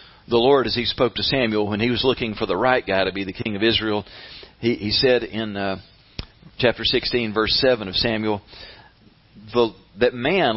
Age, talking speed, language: 40-59, 195 wpm, English